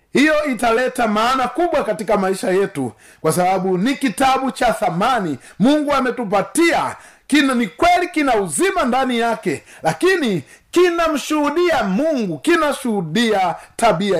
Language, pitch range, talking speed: Swahili, 200-300 Hz, 115 wpm